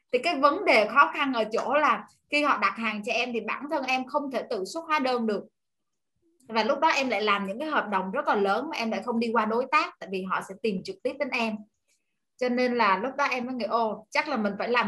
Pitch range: 205-255 Hz